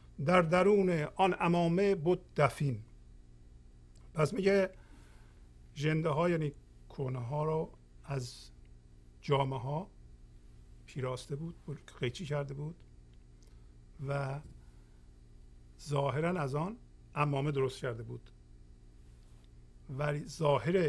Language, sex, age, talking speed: Persian, male, 50-69, 90 wpm